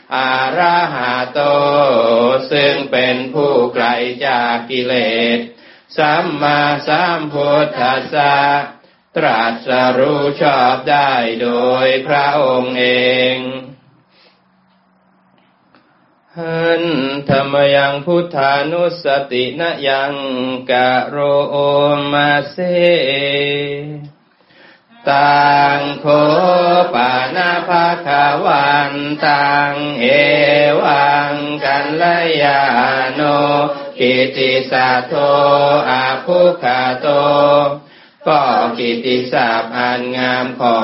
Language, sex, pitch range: Thai, male, 125-145 Hz